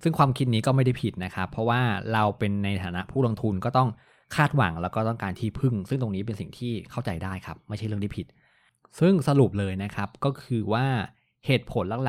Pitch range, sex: 95-130 Hz, male